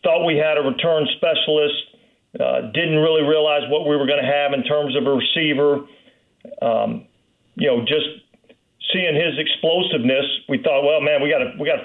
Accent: American